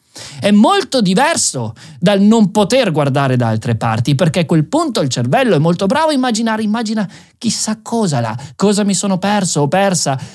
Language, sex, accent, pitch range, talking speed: Italian, male, native, 150-235 Hz, 180 wpm